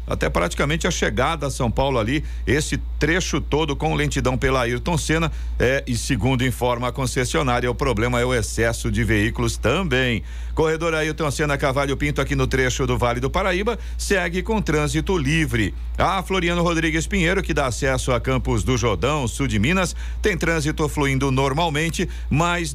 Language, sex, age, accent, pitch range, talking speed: Portuguese, male, 50-69, Brazilian, 120-150 Hz, 170 wpm